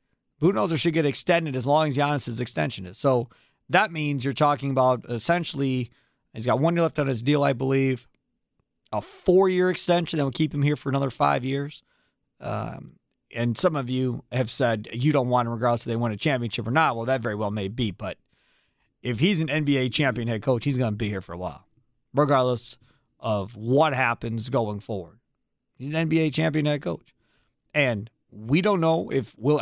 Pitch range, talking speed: 120-150 Hz, 205 wpm